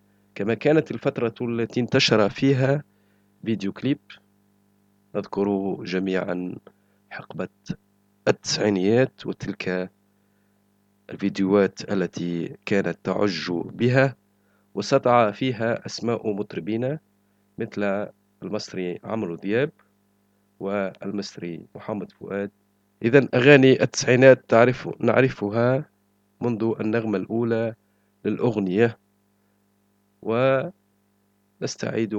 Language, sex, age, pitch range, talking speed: Arabic, male, 40-59, 100-115 Hz, 70 wpm